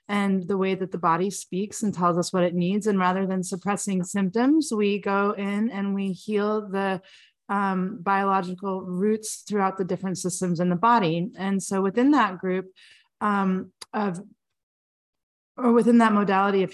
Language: English